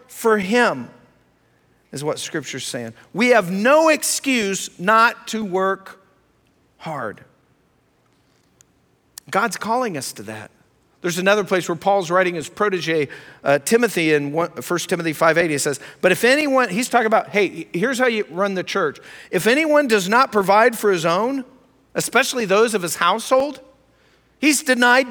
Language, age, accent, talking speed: English, 50-69, American, 155 wpm